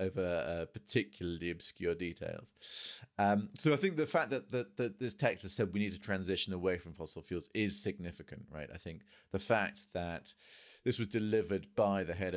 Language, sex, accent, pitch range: English, male, British, 85-110 Hz